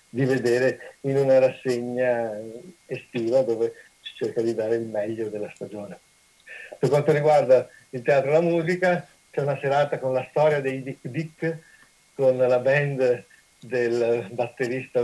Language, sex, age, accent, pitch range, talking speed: Italian, male, 60-79, native, 120-150 Hz, 150 wpm